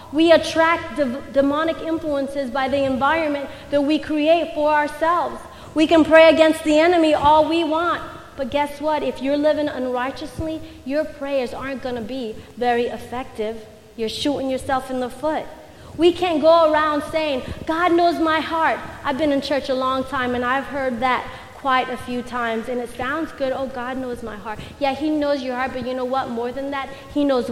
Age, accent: 30-49, American